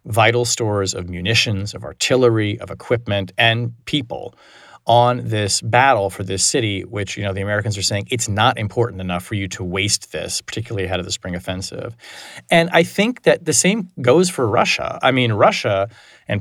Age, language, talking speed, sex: 30-49, English, 185 wpm, male